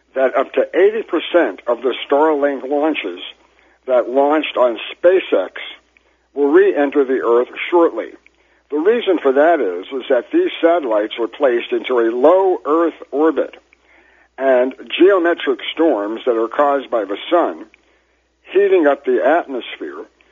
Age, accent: 60-79, American